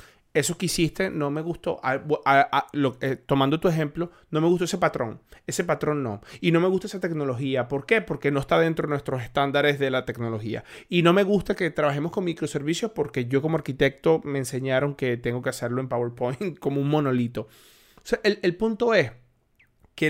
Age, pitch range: 30-49, 130-170 Hz